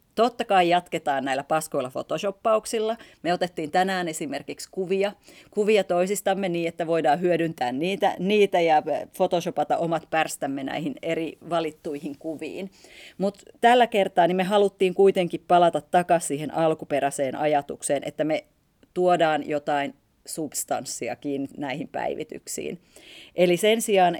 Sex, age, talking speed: female, 30-49, 120 wpm